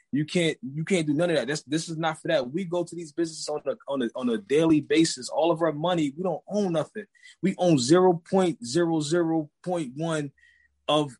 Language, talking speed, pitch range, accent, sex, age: English, 235 wpm, 150-180 Hz, American, male, 20-39